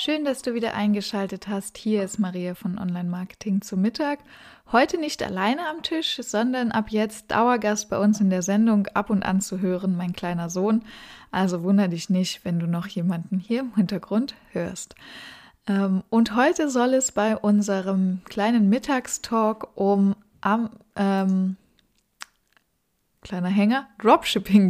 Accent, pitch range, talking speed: German, 195-245 Hz, 150 wpm